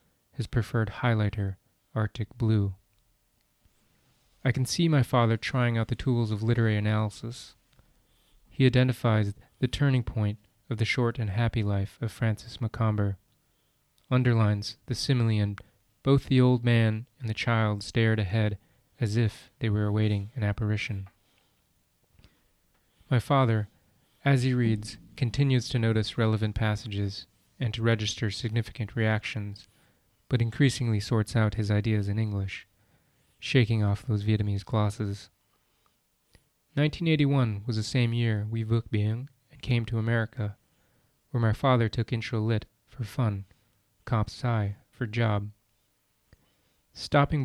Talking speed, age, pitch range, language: 130 wpm, 20-39, 105-120 Hz, English